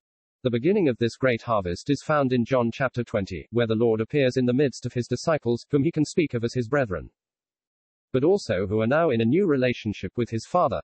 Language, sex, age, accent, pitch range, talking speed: English, male, 40-59, British, 110-140 Hz, 230 wpm